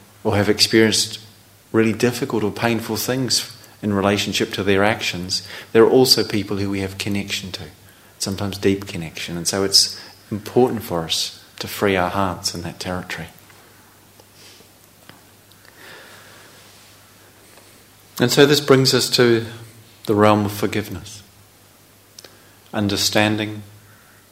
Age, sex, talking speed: 40-59, male, 120 wpm